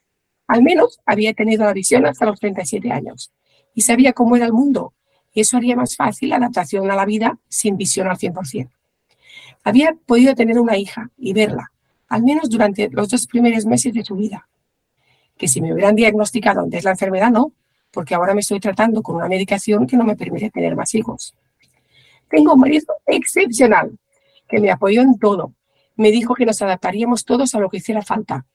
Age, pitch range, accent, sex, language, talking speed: 50-69, 200-240 Hz, Spanish, female, Spanish, 190 wpm